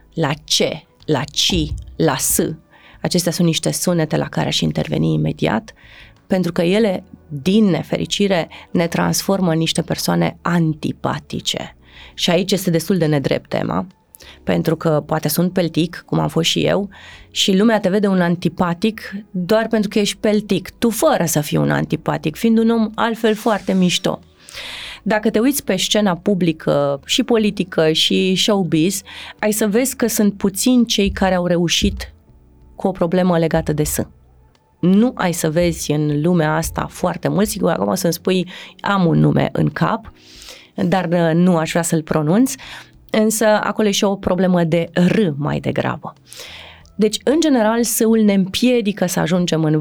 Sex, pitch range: female, 160-210 Hz